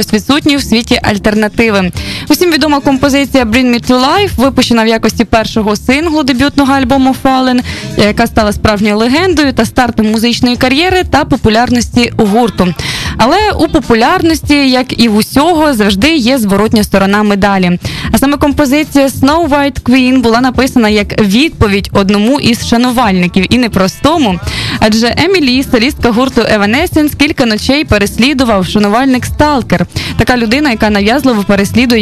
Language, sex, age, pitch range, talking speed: Ukrainian, female, 20-39, 215-280 Hz, 135 wpm